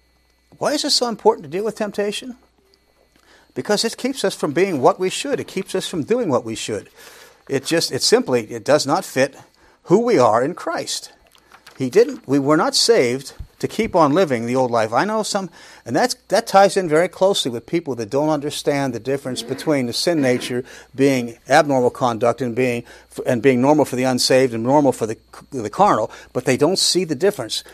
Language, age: English, 40-59